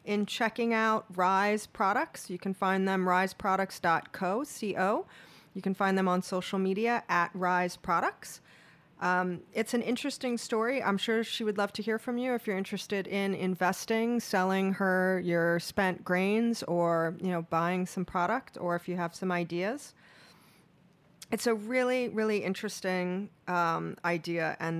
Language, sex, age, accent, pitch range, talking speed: English, female, 30-49, American, 170-200 Hz, 155 wpm